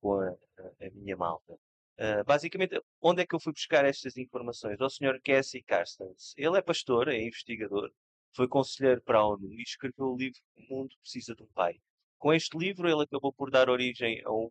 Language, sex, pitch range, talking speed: Portuguese, male, 115-160 Hz, 205 wpm